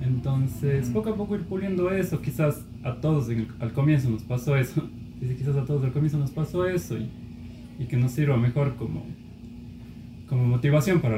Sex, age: male, 20-39